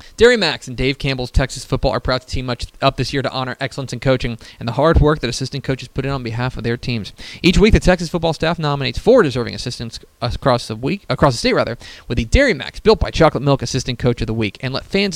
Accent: American